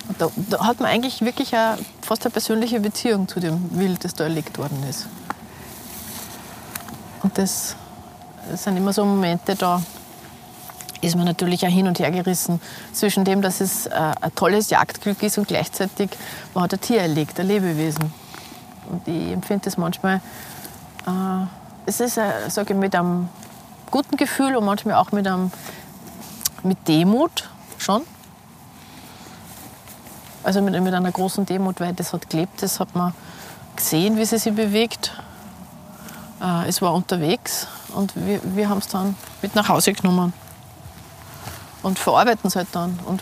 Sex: female